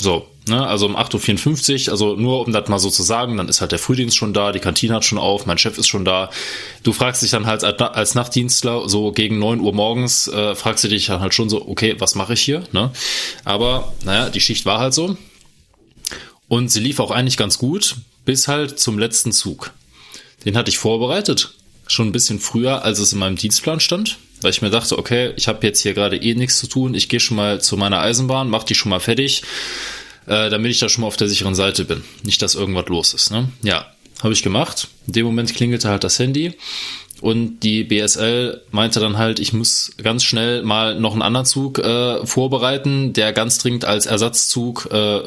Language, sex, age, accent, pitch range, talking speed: German, male, 20-39, German, 105-125 Hz, 215 wpm